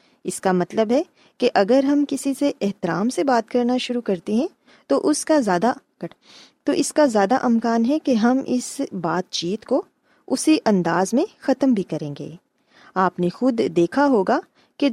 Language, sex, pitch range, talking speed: Urdu, female, 185-260 Hz, 180 wpm